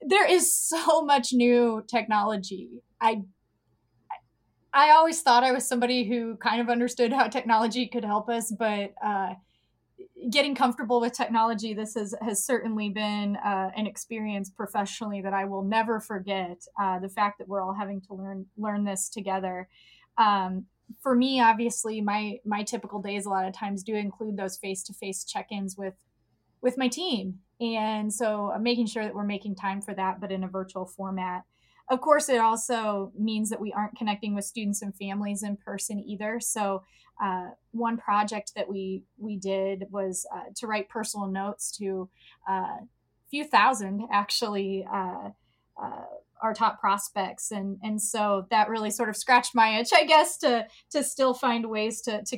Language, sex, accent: English, female, American